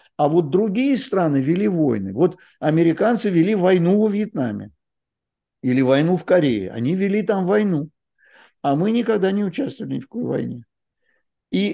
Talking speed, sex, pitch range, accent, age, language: 155 wpm, male, 145-215 Hz, native, 50-69, Russian